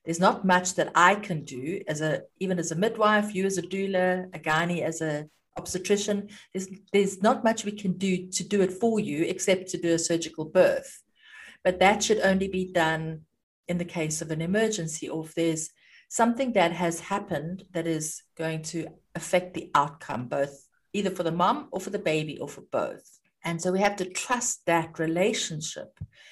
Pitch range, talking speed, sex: 165-205 Hz, 195 wpm, female